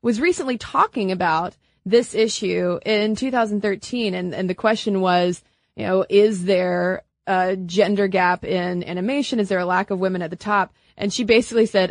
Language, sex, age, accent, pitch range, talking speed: English, female, 30-49, American, 180-225 Hz, 175 wpm